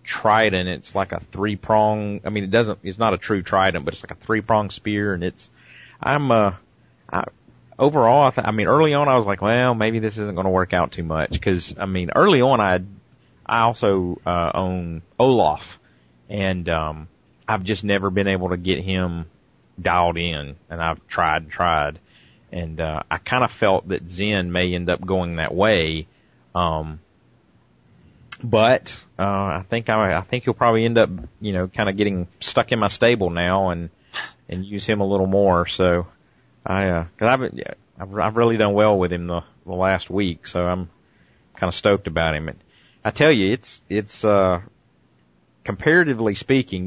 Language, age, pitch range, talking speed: English, 30-49, 90-110 Hz, 190 wpm